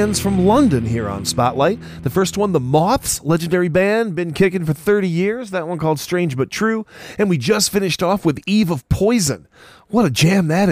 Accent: American